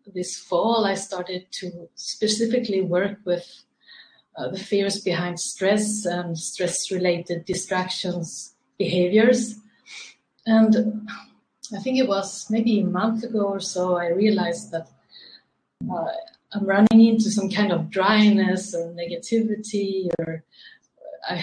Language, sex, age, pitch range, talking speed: English, female, 30-49, 185-225 Hz, 120 wpm